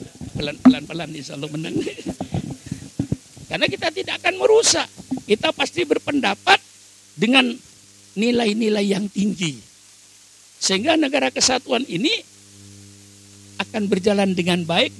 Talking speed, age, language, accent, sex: 90 wpm, 50-69, Indonesian, native, male